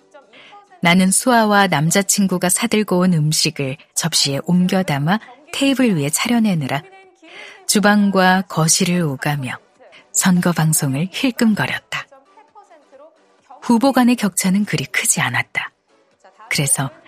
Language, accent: Korean, native